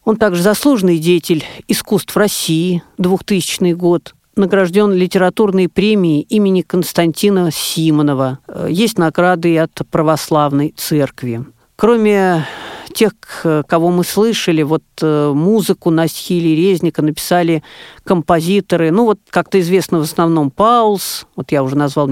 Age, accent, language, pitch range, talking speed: 40-59, native, Russian, 160-195 Hz, 115 wpm